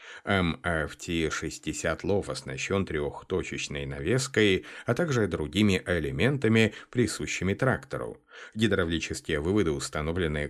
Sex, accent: male, native